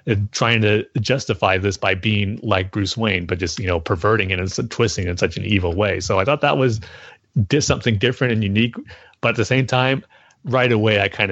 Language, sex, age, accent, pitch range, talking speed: English, male, 30-49, American, 95-115 Hz, 215 wpm